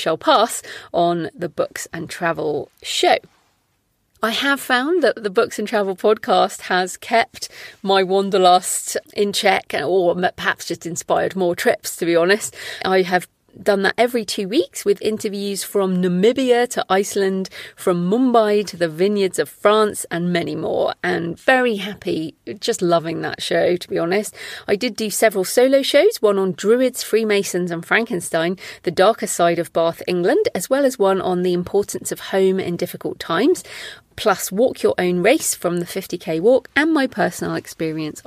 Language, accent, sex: English, British, female